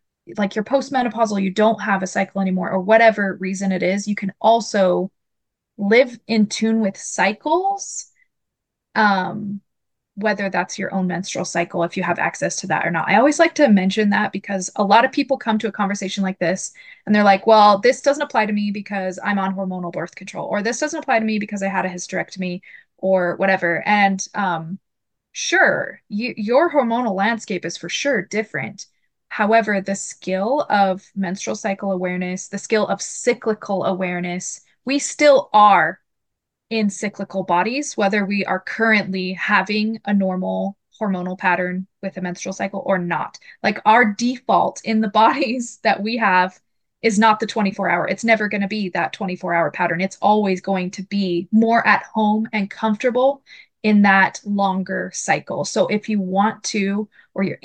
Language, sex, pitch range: English, female, 190-220 Hz